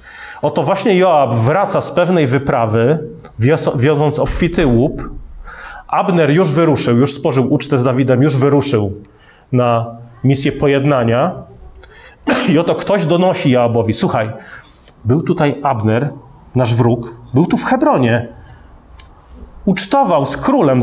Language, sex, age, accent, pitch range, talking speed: Polish, male, 30-49, native, 125-185 Hz, 120 wpm